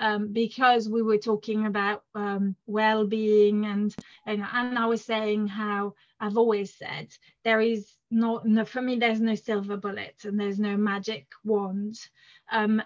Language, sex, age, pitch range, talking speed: English, female, 30-49, 205-230 Hz, 160 wpm